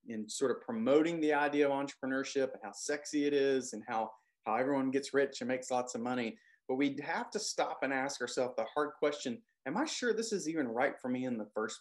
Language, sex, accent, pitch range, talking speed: English, male, American, 135-220 Hz, 240 wpm